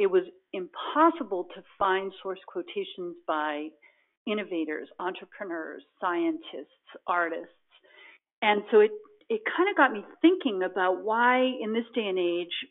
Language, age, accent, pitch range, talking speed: English, 50-69, American, 185-275 Hz, 130 wpm